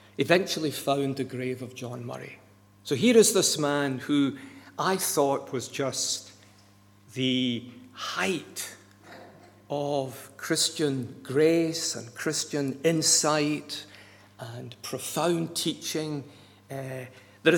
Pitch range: 100-155 Hz